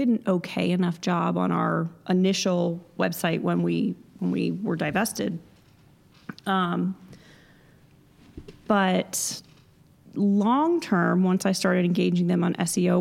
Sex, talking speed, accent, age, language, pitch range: female, 115 wpm, American, 30-49, English, 175-195 Hz